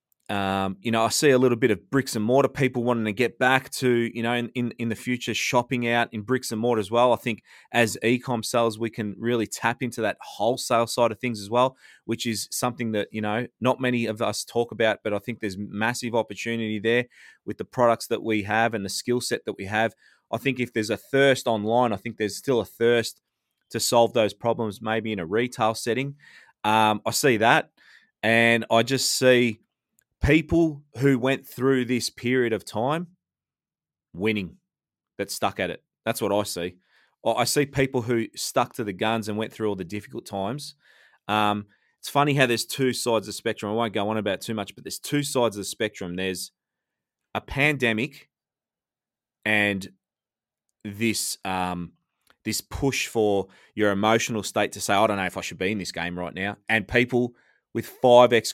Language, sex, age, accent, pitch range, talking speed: English, male, 20-39, Australian, 105-125 Hz, 205 wpm